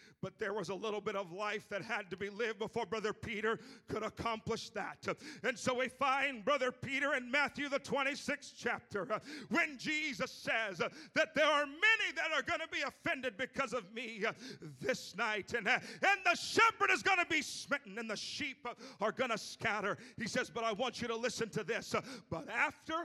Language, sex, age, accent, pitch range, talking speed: English, male, 40-59, American, 210-290 Hz, 200 wpm